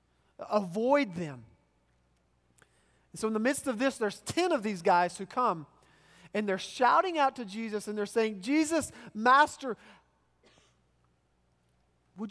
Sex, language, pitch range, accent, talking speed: male, English, 140-205 Hz, American, 130 wpm